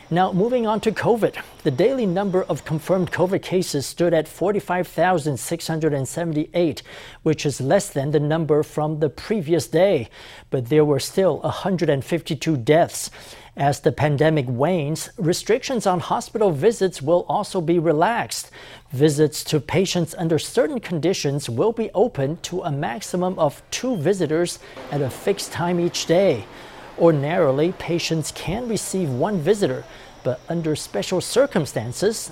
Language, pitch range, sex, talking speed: English, 150-180 Hz, male, 135 wpm